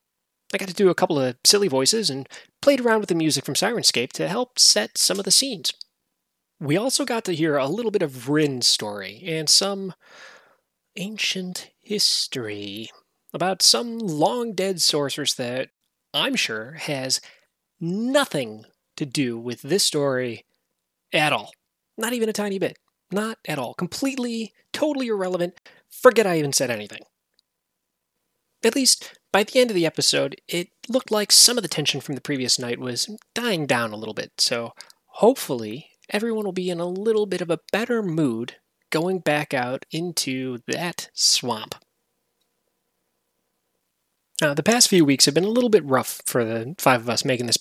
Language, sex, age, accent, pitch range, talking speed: English, male, 30-49, American, 130-205 Hz, 170 wpm